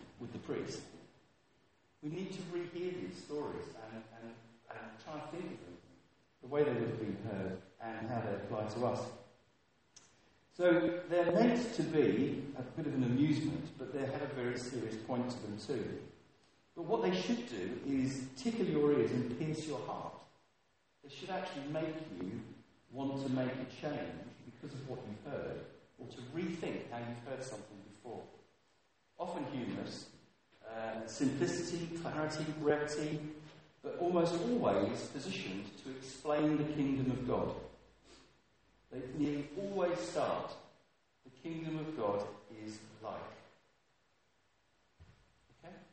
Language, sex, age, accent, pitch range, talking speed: English, male, 50-69, British, 110-155 Hz, 150 wpm